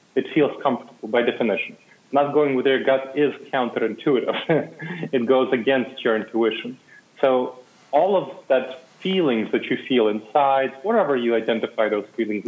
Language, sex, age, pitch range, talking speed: English, male, 30-49, 115-140 Hz, 150 wpm